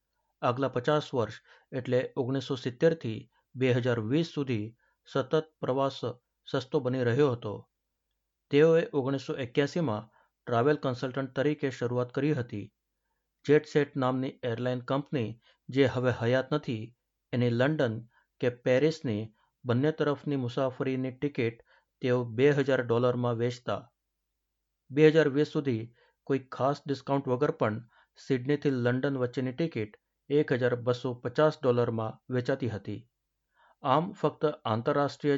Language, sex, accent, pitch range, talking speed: Gujarati, male, native, 125-150 Hz, 105 wpm